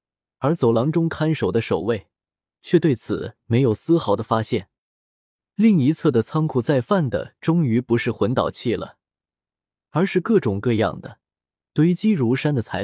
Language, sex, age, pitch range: Chinese, male, 20-39, 115-165 Hz